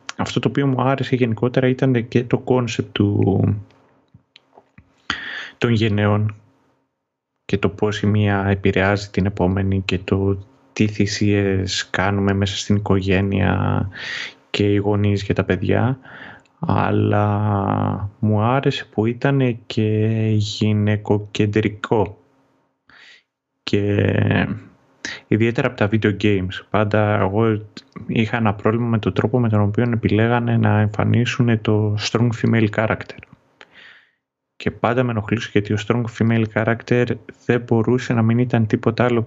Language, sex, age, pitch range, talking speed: Greek, male, 20-39, 100-120 Hz, 125 wpm